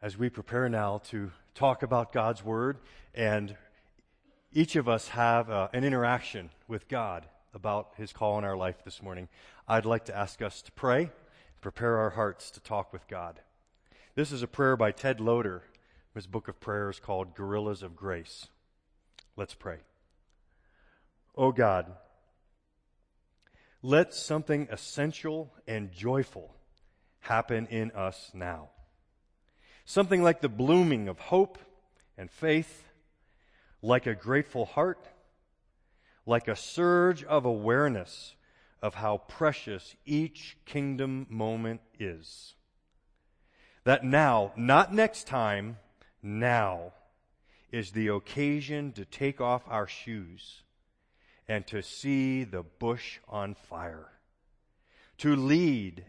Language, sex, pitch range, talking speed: English, male, 100-135 Hz, 125 wpm